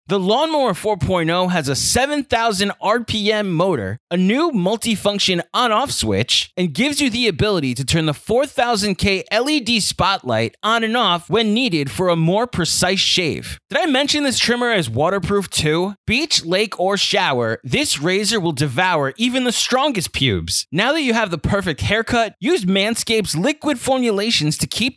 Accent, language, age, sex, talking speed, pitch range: American, English, 20-39, male, 160 wpm, 160-235 Hz